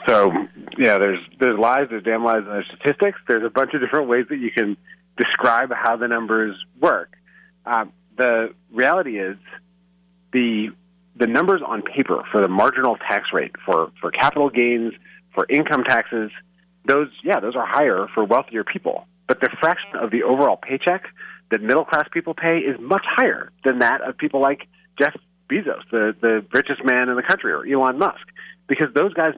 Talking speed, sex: 180 wpm, male